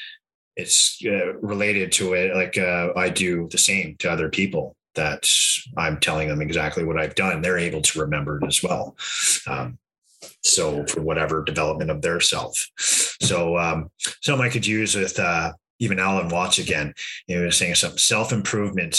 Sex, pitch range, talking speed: male, 85-130 Hz, 170 wpm